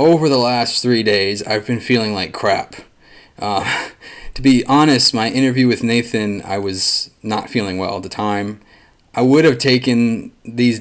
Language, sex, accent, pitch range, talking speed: English, male, American, 100-125 Hz, 170 wpm